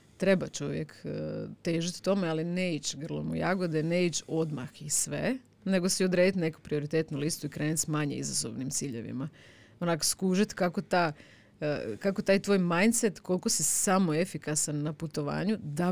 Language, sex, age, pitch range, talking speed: Croatian, female, 30-49, 145-185 Hz, 155 wpm